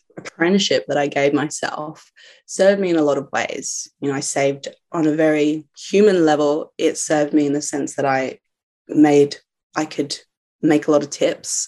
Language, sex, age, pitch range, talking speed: English, female, 20-39, 145-160 Hz, 190 wpm